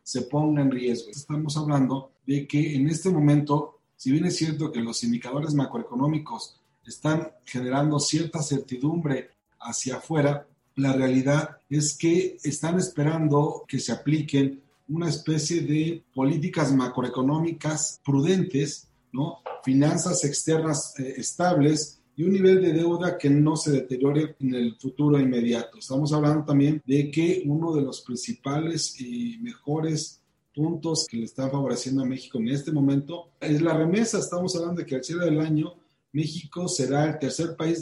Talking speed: 150 wpm